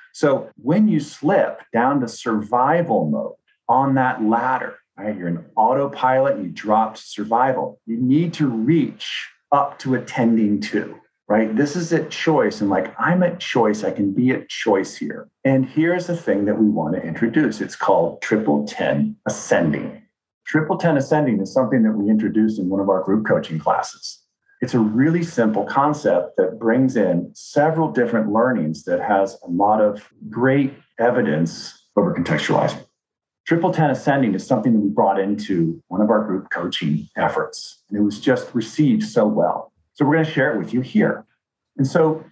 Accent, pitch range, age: American, 105-160 Hz, 50-69